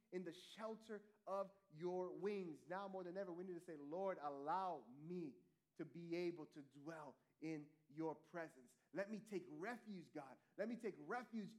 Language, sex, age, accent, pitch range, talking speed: English, male, 30-49, American, 170-220 Hz, 175 wpm